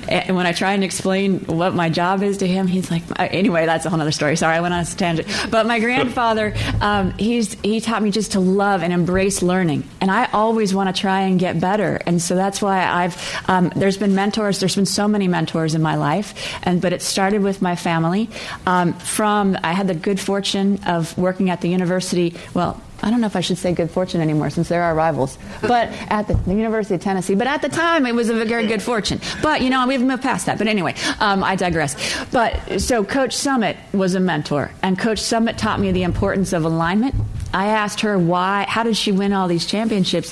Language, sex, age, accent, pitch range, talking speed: English, female, 30-49, American, 175-215 Hz, 235 wpm